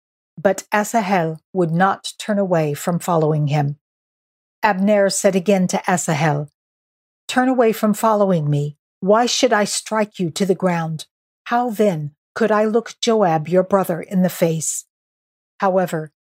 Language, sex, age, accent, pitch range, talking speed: English, female, 50-69, American, 160-205 Hz, 145 wpm